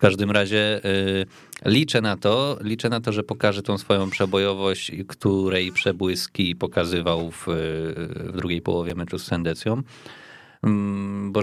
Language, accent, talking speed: Polish, native, 145 wpm